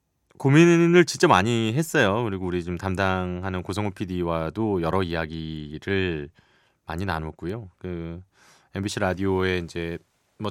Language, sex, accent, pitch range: Korean, male, native, 90-125 Hz